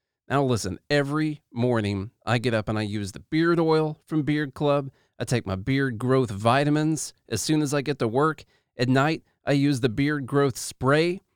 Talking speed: 195 wpm